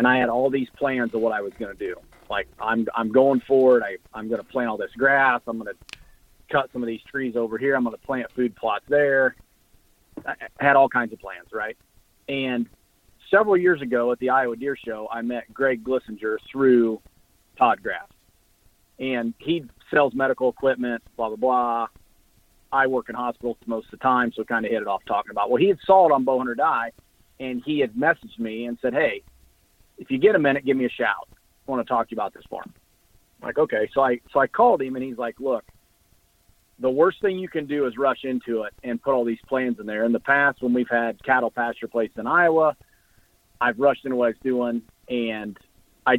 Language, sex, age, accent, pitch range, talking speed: English, male, 40-59, American, 115-135 Hz, 225 wpm